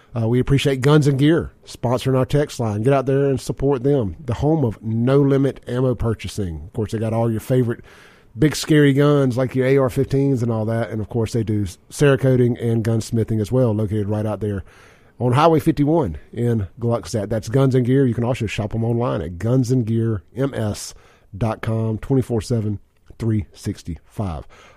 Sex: male